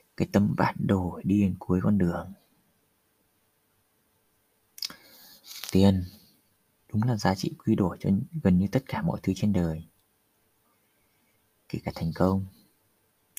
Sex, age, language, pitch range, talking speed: male, 20-39, Vietnamese, 90-110 Hz, 130 wpm